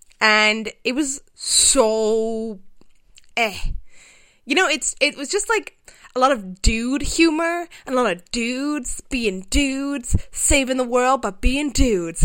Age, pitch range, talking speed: 20-39, 195-275 Hz, 145 wpm